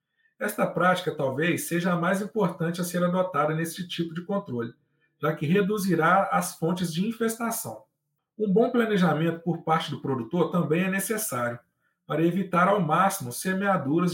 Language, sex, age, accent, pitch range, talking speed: Portuguese, male, 40-59, Brazilian, 155-195 Hz, 155 wpm